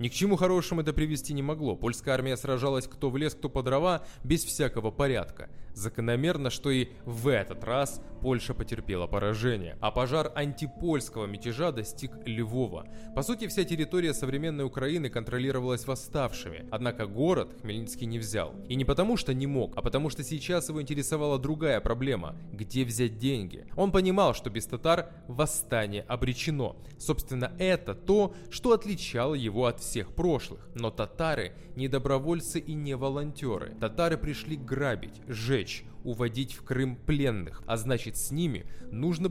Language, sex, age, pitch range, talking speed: Russian, male, 20-39, 120-155 Hz, 155 wpm